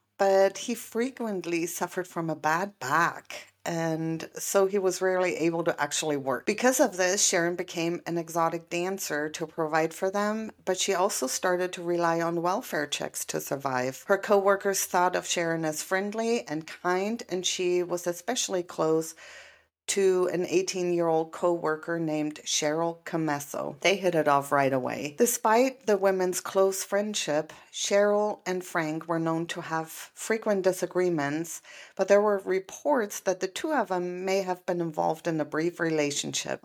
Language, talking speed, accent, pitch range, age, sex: English, 160 wpm, American, 160-195 Hz, 40-59, female